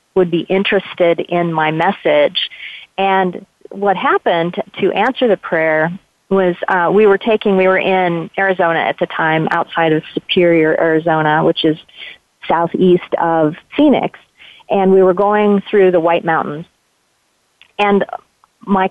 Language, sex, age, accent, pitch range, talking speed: English, female, 40-59, American, 165-195 Hz, 140 wpm